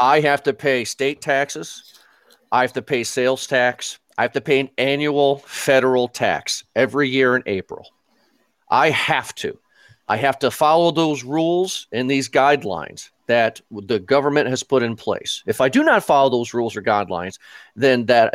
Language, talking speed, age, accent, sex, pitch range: English, 175 wpm, 40-59, American, male, 115-155 Hz